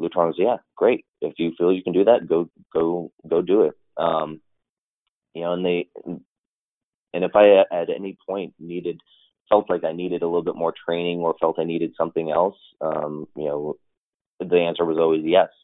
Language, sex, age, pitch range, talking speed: English, male, 30-49, 80-85 Hz, 190 wpm